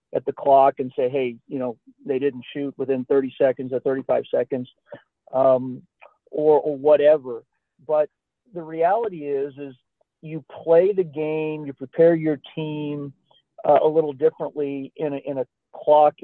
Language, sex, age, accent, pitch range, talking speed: English, male, 40-59, American, 135-155 Hz, 155 wpm